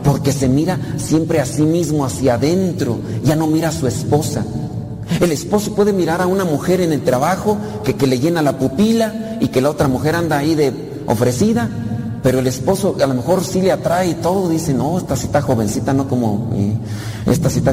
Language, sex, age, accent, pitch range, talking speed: Spanish, male, 40-59, Mexican, 120-160 Hz, 205 wpm